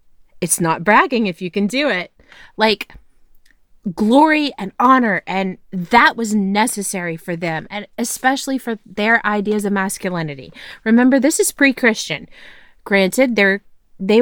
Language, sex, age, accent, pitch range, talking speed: English, female, 30-49, American, 190-250 Hz, 135 wpm